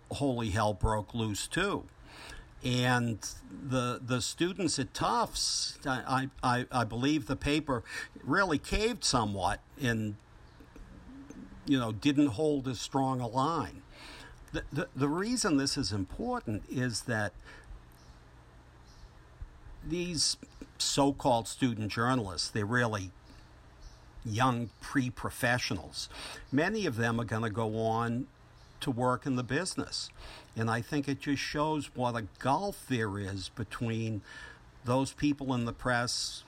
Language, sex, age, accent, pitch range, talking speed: English, male, 60-79, American, 105-135 Hz, 125 wpm